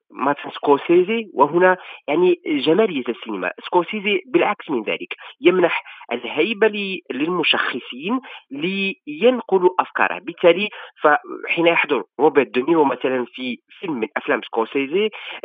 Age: 40-59